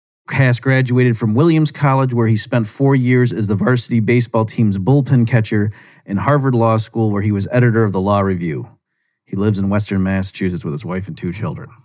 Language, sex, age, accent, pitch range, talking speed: English, male, 40-59, American, 100-120 Hz, 205 wpm